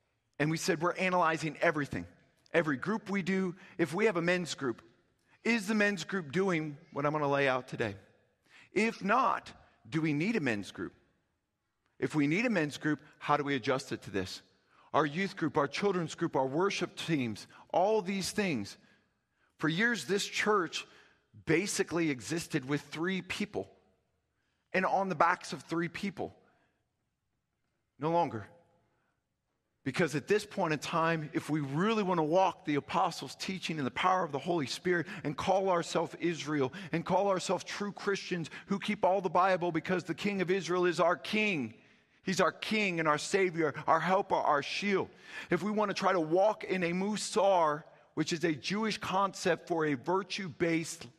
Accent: American